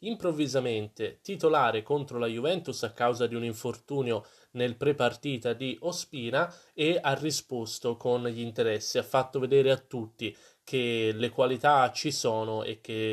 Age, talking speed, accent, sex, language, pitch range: 20-39, 145 wpm, native, male, Italian, 115-140 Hz